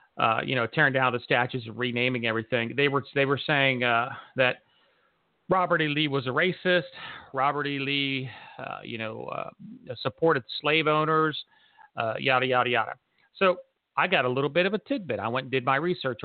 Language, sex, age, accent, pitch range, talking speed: English, male, 40-59, American, 125-160 Hz, 190 wpm